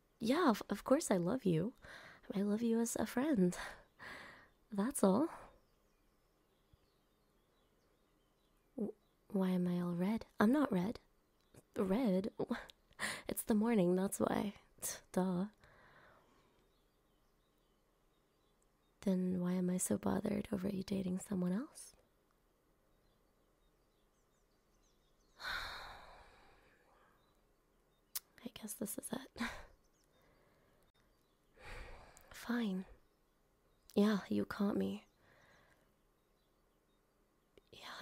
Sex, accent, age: female, American, 20-39